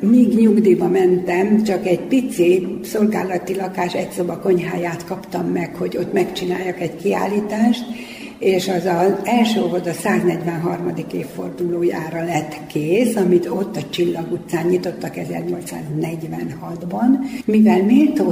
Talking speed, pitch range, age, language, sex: 120 wpm, 175-210 Hz, 60-79, Hungarian, female